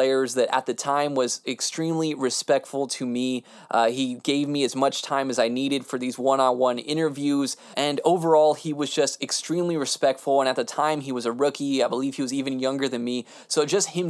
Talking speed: 210 wpm